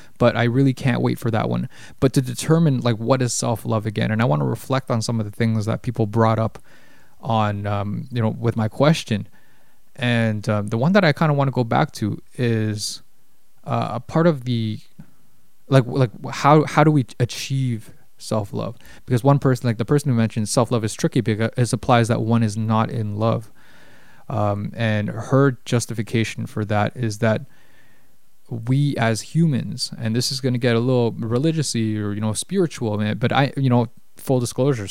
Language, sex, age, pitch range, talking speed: English, male, 20-39, 110-135 Hz, 200 wpm